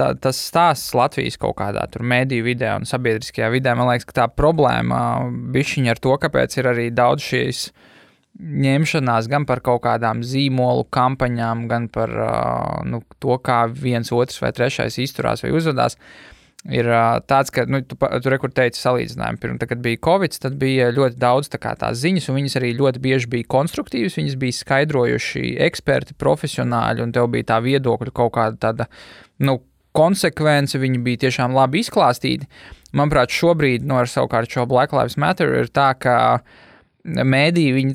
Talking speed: 165 wpm